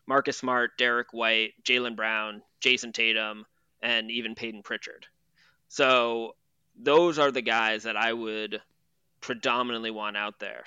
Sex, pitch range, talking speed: male, 110-125 Hz, 135 wpm